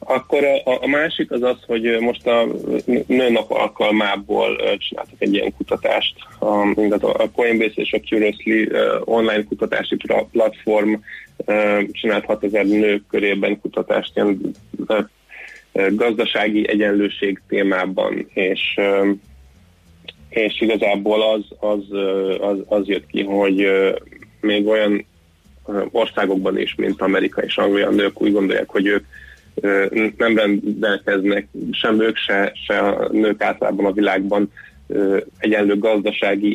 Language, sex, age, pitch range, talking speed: Hungarian, male, 20-39, 95-105 Hz, 110 wpm